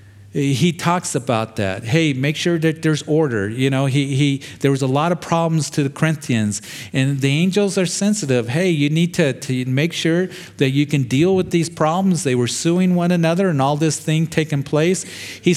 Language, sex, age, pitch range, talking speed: English, male, 40-59, 120-160 Hz, 210 wpm